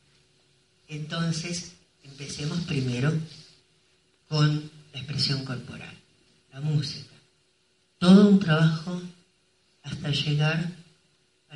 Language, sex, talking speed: Spanish, female, 80 wpm